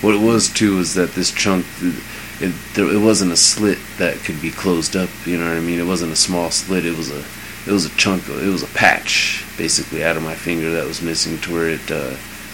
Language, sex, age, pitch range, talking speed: English, male, 30-49, 85-100 Hz, 250 wpm